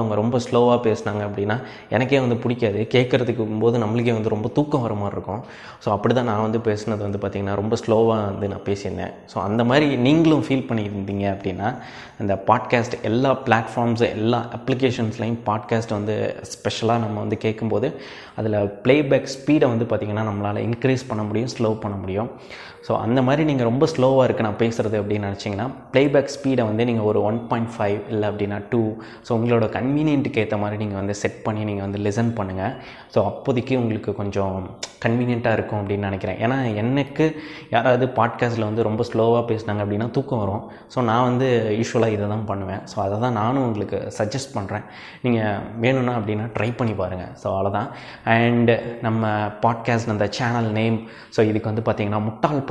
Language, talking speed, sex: Tamil, 165 wpm, male